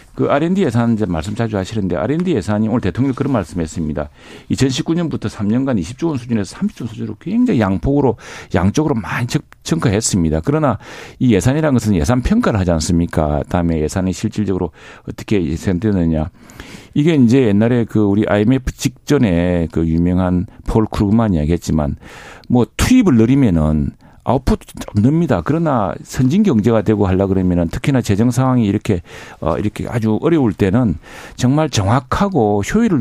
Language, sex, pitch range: Korean, male, 90-130 Hz